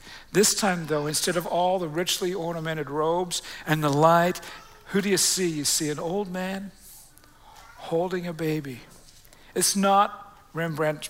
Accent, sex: American, male